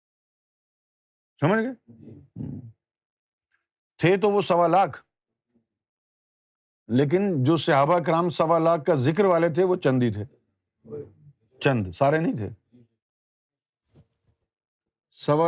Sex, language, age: male, Urdu, 50-69